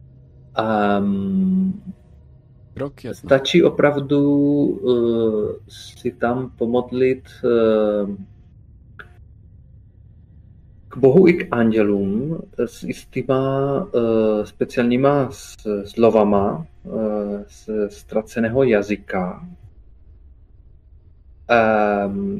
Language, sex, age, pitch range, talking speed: Czech, male, 40-59, 100-135 Hz, 60 wpm